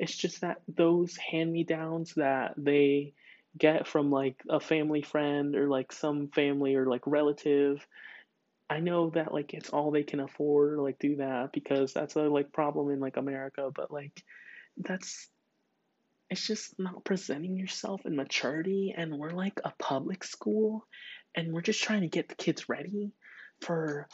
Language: English